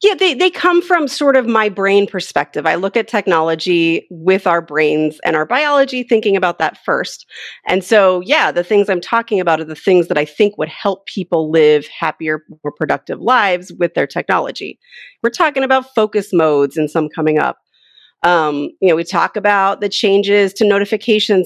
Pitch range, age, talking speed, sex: 165-230 Hz, 30-49, 190 wpm, female